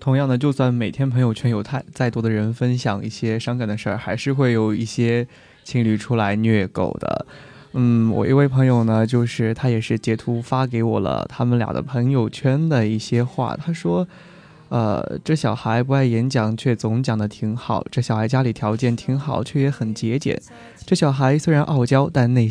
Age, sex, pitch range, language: 20-39, male, 110-140 Hz, Chinese